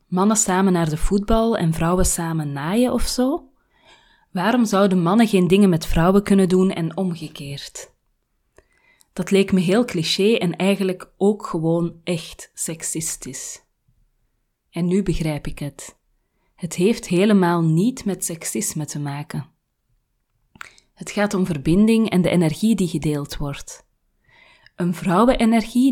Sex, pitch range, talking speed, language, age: female, 165-210 Hz, 135 wpm, Dutch, 20-39